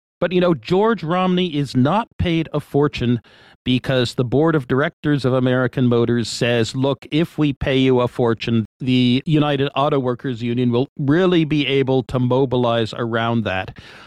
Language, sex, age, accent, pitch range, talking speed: English, male, 50-69, American, 120-145 Hz, 165 wpm